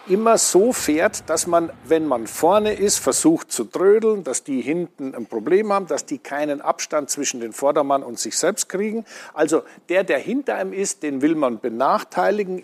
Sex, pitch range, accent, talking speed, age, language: male, 145-210 Hz, German, 185 wpm, 50-69, German